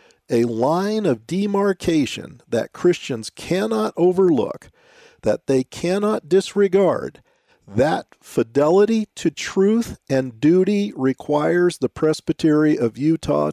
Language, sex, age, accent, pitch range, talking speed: English, male, 50-69, American, 130-180 Hz, 100 wpm